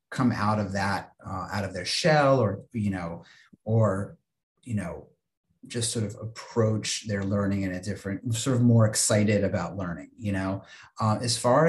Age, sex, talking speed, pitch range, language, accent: 30-49, male, 180 wpm, 105-120 Hz, English, American